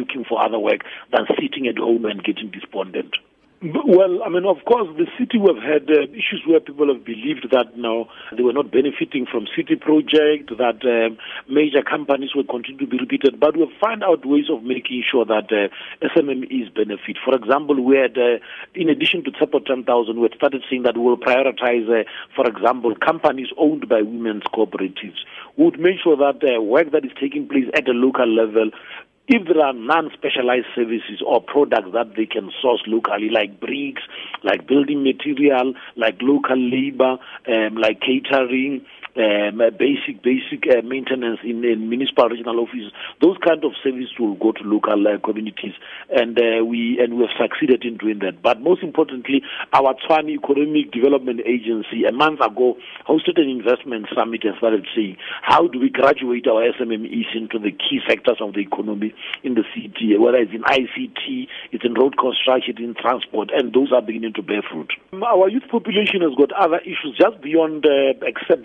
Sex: male